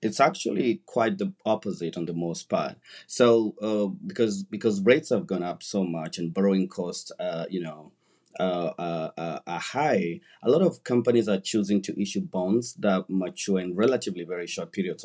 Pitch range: 90-110 Hz